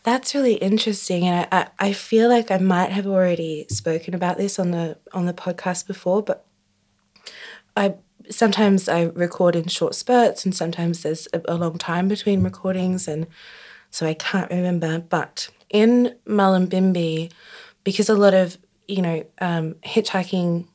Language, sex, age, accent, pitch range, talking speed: English, female, 20-39, Australian, 165-195 Hz, 160 wpm